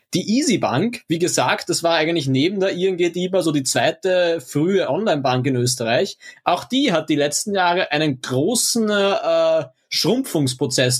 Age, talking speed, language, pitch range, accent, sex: 20-39, 155 wpm, German, 155-195 Hz, German, male